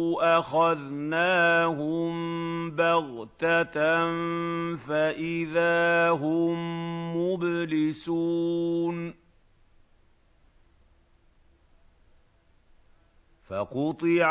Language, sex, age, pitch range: Arabic, male, 50-69, 110-165 Hz